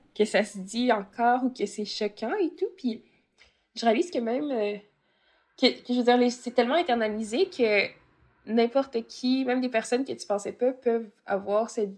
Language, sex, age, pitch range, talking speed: French, female, 20-39, 205-235 Hz, 190 wpm